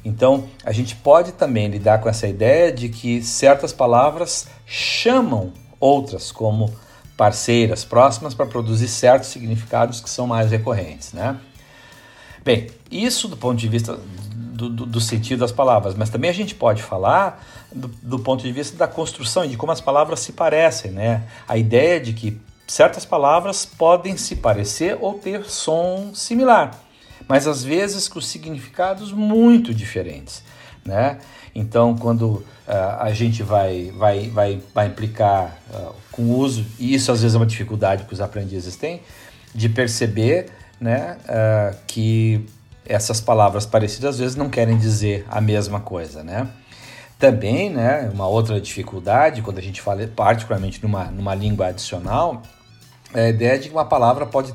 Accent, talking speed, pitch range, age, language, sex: Brazilian, 155 wpm, 105-135 Hz, 50-69, Portuguese, male